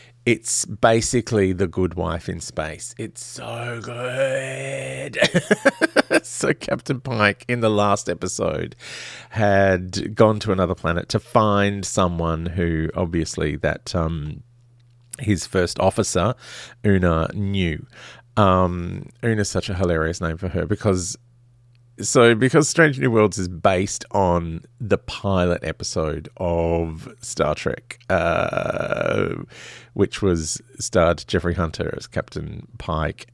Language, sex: English, male